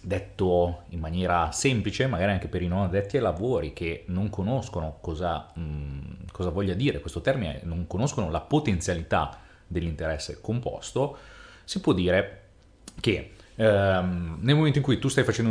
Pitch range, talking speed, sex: 90-120 Hz, 155 wpm, male